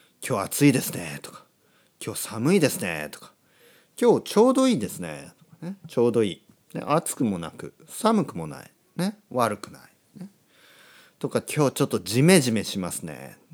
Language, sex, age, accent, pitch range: Japanese, male, 40-59, native, 105-175 Hz